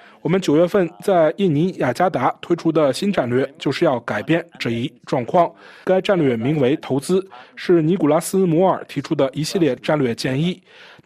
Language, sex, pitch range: Chinese, male, 135-185 Hz